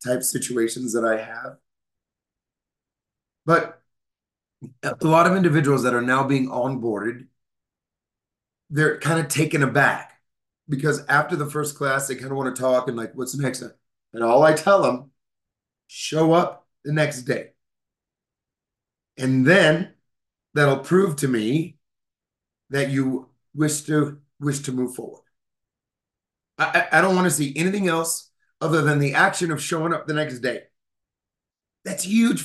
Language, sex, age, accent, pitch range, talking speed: English, male, 30-49, American, 125-165 Hz, 150 wpm